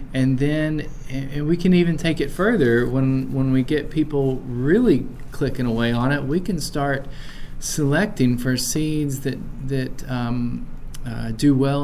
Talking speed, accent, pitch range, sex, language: 155 wpm, American, 120-145 Hz, male, English